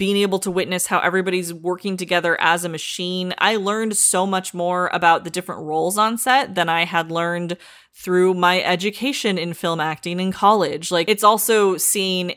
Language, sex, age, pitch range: English, female, 20-39, 170-205 Hz